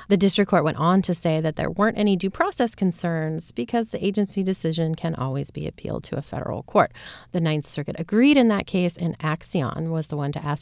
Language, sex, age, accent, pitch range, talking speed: English, female, 30-49, American, 155-195 Hz, 225 wpm